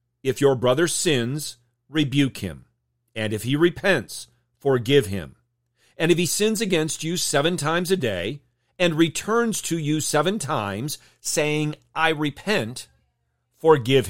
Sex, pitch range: male, 120-165 Hz